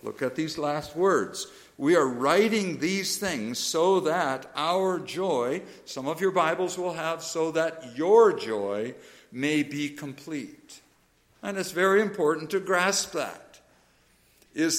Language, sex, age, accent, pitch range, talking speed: English, male, 60-79, American, 150-205 Hz, 140 wpm